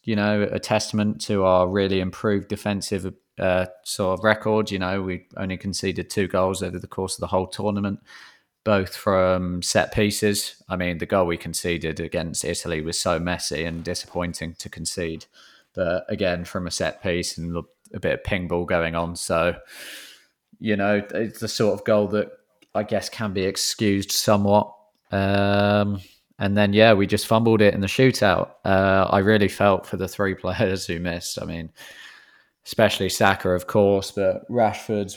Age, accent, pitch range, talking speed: 20-39, British, 90-105 Hz, 175 wpm